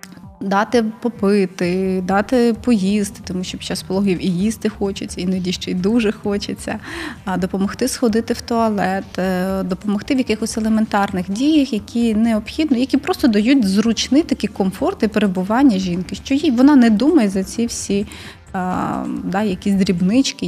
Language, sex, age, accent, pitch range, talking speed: Ukrainian, female, 20-39, native, 185-230 Hz, 140 wpm